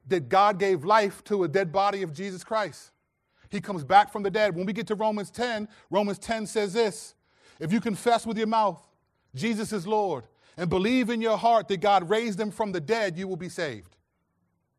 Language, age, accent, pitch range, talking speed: English, 30-49, American, 130-205 Hz, 210 wpm